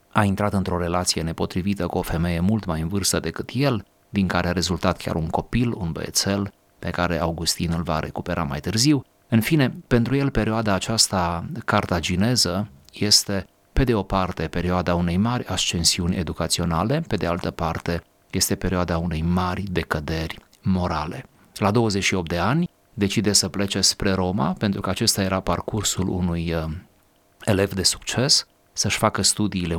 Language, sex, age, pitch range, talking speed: Romanian, male, 30-49, 85-105 Hz, 155 wpm